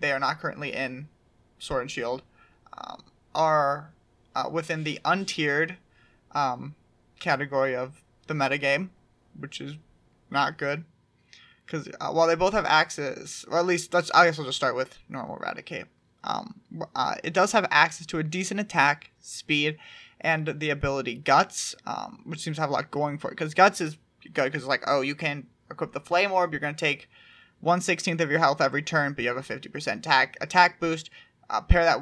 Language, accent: English, American